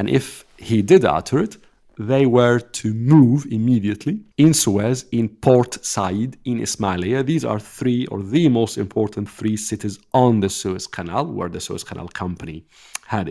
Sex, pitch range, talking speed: male, 100-135 Hz, 165 wpm